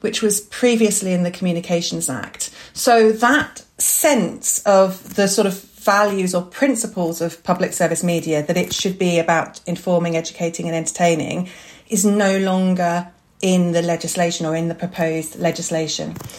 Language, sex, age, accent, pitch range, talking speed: English, female, 40-59, British, 185-230 Hz, 150 wpm